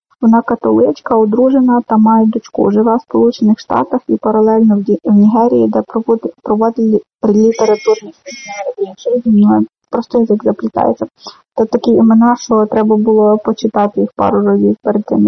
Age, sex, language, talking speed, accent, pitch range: 20-39, female, Ukrainian, 140 wpm, native, 220-245 Hz